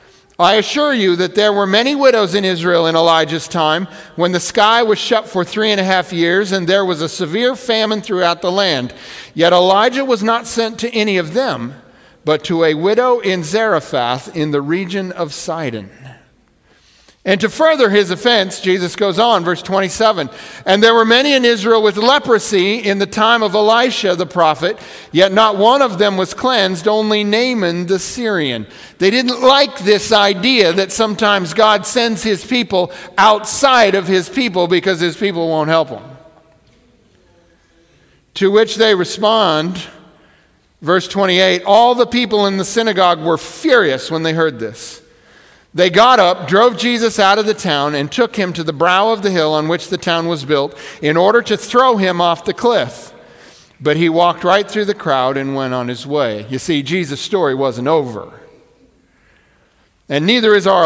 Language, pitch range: English, 165-220 Hz